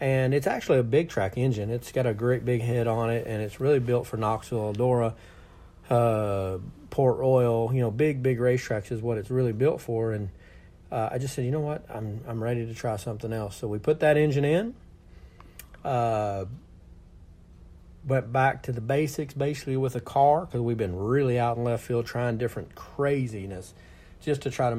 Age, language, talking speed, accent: 40-59, English, 200 wpm, American